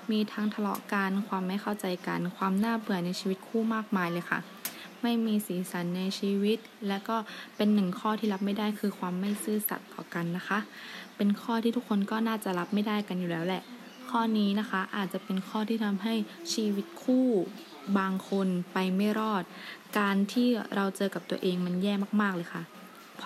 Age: 20-39